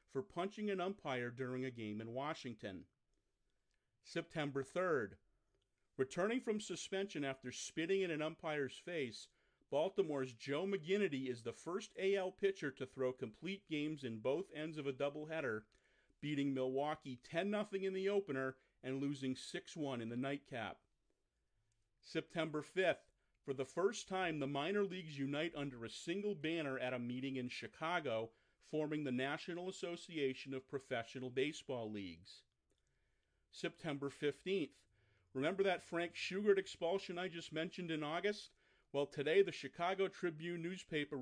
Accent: American